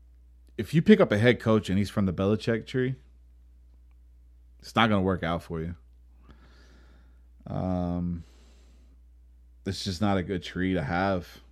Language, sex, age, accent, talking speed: English, male, 20-39, American, 155 wpm